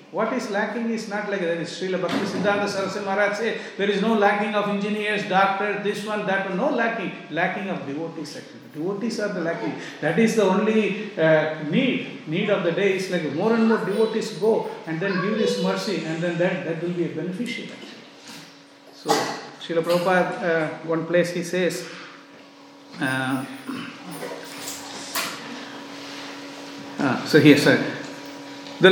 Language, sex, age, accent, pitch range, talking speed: English, male, 50-69, Indian, 195-255 Hz, 165 wpm